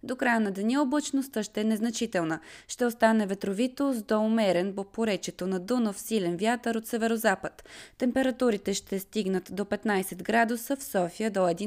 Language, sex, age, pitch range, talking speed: Bulgarian, female, 20-39, 185-235 Hz, 160 wpm